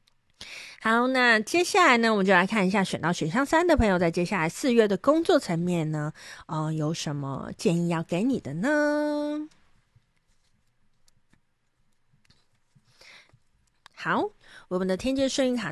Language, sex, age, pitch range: Chinese, female, 30-49, 160-220 Hz